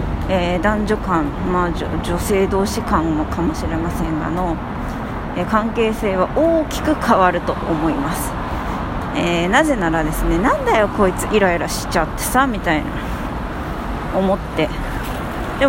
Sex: female